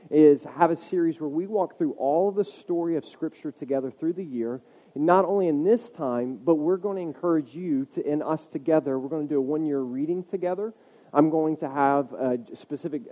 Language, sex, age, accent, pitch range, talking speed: English, male, 40-59, American, 135-165 Hz, 225 wpm